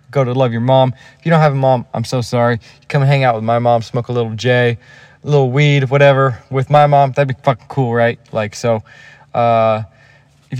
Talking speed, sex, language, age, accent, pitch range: 225 wpm, male, English, 20-39, American, 120-140 Hz